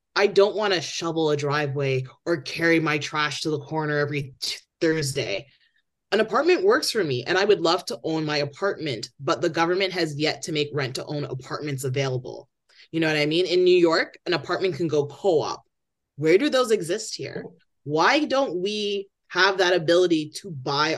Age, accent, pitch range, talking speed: 20-39, American, 155-265 Hz, 190 wpm